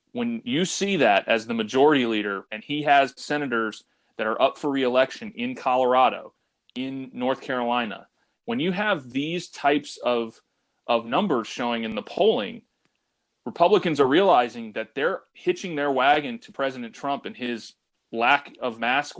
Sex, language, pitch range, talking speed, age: male, English, 115-150 Hz, 155 wpm, 30-49